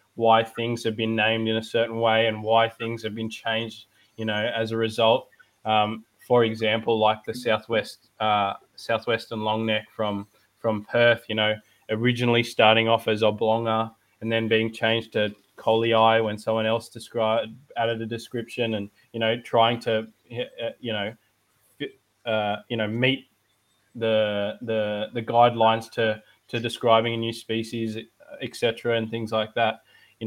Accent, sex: Australian, male